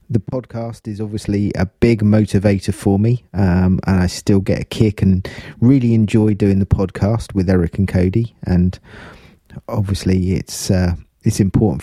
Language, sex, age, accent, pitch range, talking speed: English, male, 30-49, British, 95-115 Hz, 160 wpm